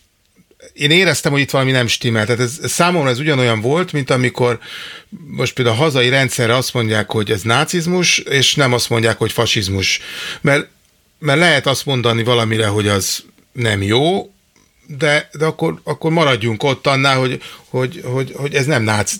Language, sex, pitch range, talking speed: Hungarian, male, 115-150 Hz, 170 wpm